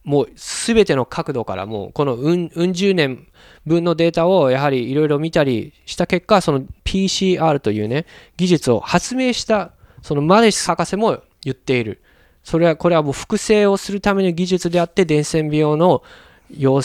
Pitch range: 125-175 Hz